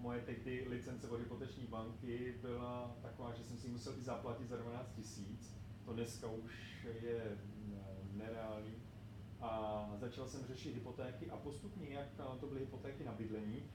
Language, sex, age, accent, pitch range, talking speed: Czech, male, 30-49, native, 105-135 Hz, 155 wpm